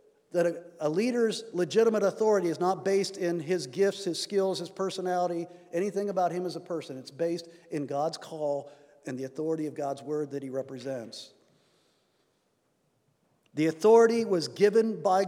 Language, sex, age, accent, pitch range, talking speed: English, male, 50-69, American, 150-195 Hz, 155 wpm